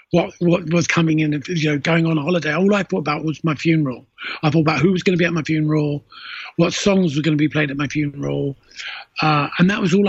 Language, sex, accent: English, male, British